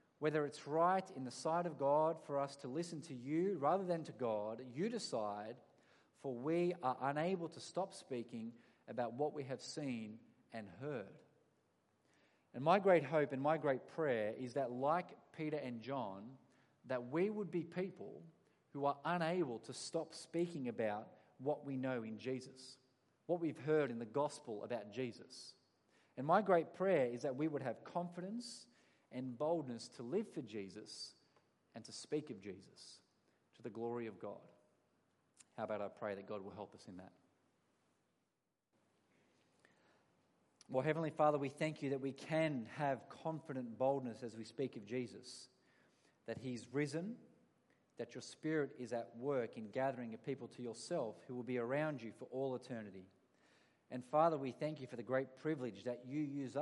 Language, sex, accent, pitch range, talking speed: English, male, Australian, 125-160 Hz, 170 wpm